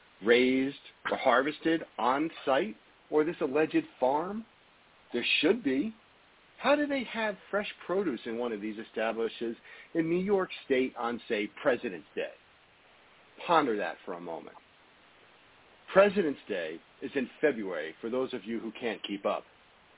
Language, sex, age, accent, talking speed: English, male, 50-69, American, 145 wpm